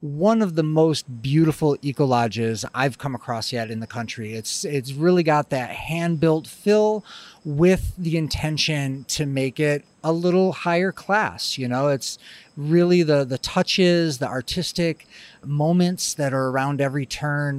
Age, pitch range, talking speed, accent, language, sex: 30-49, 125-160 Hz, 155 wpm, American, English, male